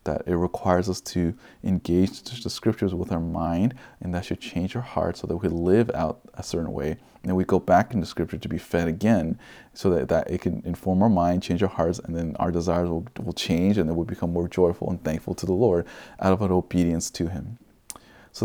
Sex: male